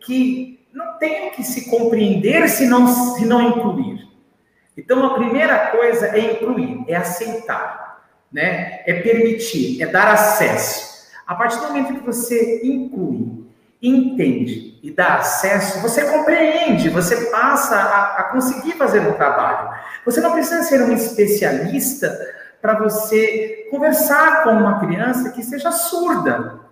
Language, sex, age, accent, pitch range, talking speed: Portuguese, male, 50-69, Brazilian, 215-275 Hz, 135 wpm